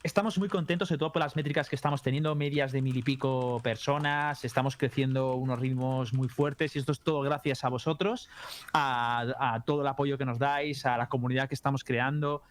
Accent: Spanish